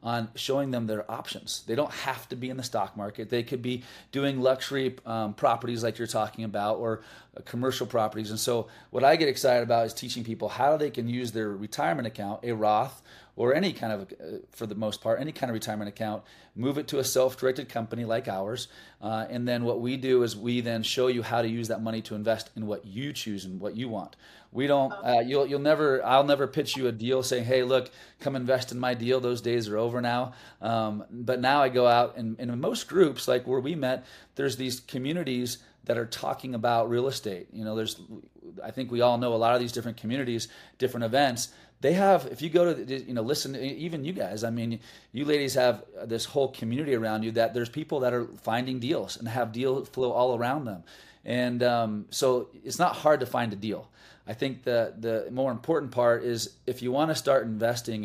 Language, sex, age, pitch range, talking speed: English, male, 30-49, 115-130 Hz, 230 wpm